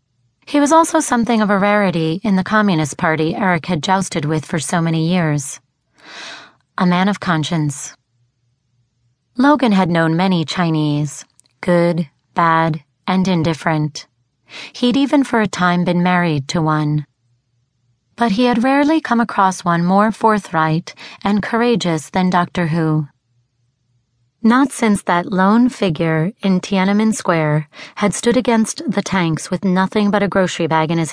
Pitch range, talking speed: 150-210 Hz, 145 wpm